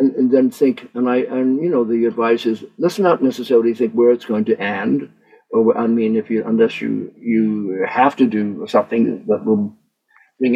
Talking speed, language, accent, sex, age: 205 wpm, English, American, male, 60-79